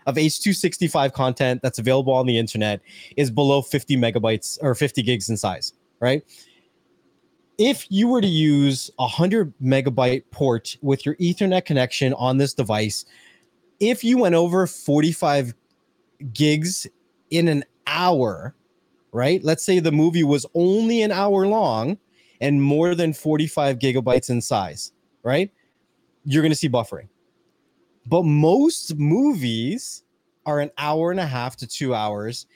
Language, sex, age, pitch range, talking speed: English, male, 20-39, 130-185 Hz, 145 wpm